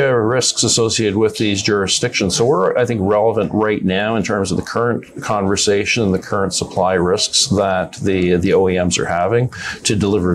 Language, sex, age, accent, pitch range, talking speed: English, male, 50-69, American, 95-125 Hz, 180 wpm